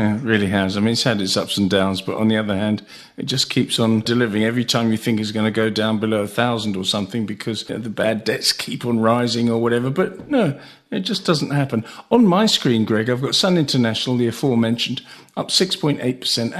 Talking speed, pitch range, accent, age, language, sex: 230 wpm, 115-145 Hz, British, 50-69, English, male